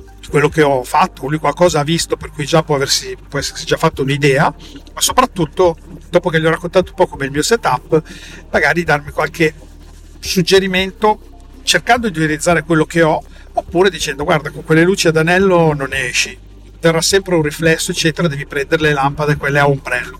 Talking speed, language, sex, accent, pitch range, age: 185 wpm, Italian, male, native, 140-170 Hz, 50-69